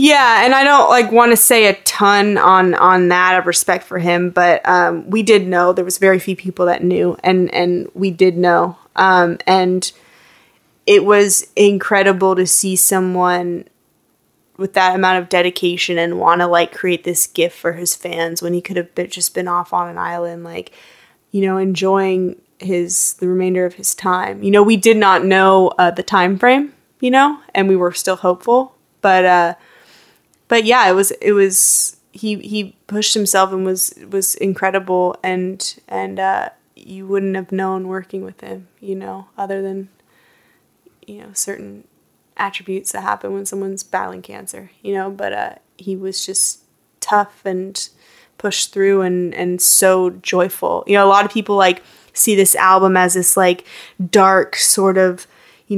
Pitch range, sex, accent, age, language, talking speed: 180-195 Hz, female, American, 20-39, English, 180 wpm